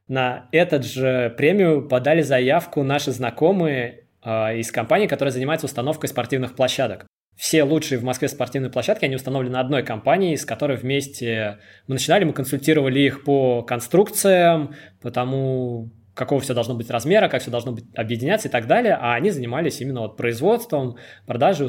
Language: Russian